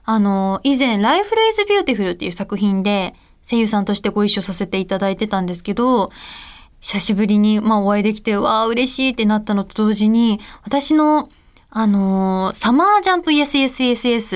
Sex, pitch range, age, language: female, 205-265 Hz, 20-39, Japanese